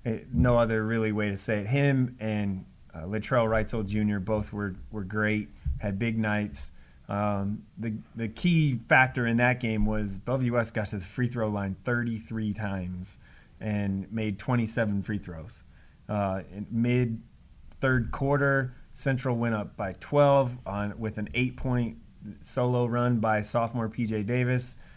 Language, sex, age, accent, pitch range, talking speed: English, male, 30-49, American, 100-120 Hz, 150 wpm